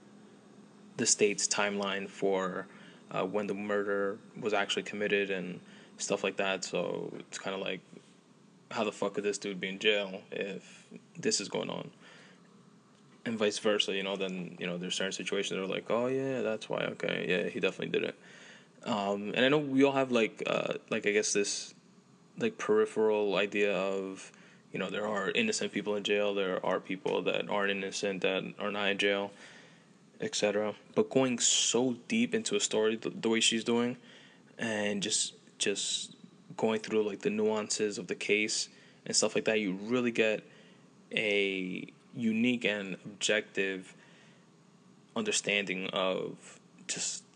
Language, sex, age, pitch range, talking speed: English, male, 20-39, 100-125 Hz, 165 wpm